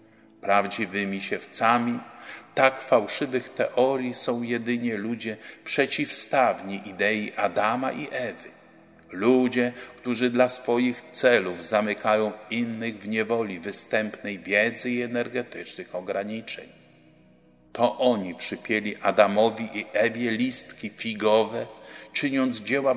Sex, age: male, 50-69